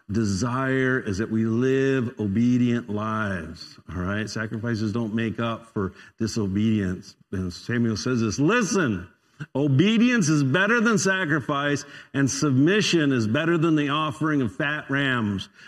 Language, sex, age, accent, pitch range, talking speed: English, male, 50-69, American, 115-160 Hz, 135 wpm